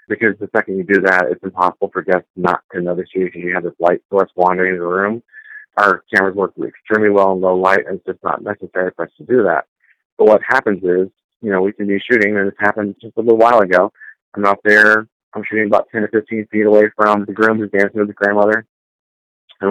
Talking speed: 240 wpm